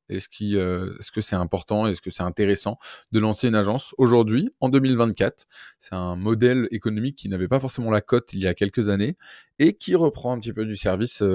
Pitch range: 95-115 Hz